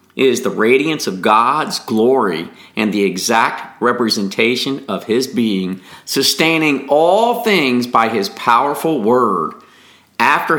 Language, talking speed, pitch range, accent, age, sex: English, 120 wpm, 115-160 Hz, American, 50-69, male